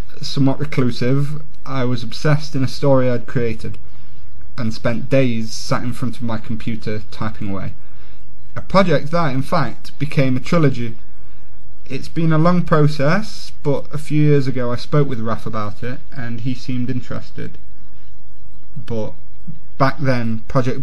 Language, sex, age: English, male, 30-49